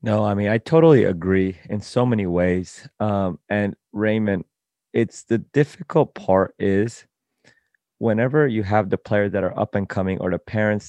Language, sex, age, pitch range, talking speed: English, male, 30-49, 105-150 Hz, 170 wpm